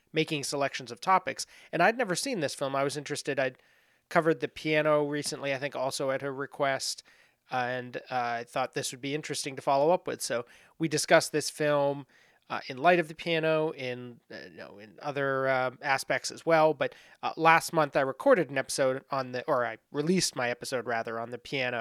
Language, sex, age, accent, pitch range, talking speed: English, male, 30-49, American, 130-160 Hz, 210 wpm